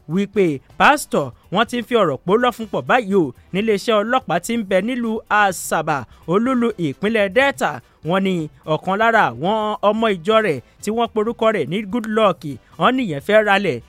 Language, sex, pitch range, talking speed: English, male, 175-230 Hz, 160 wpm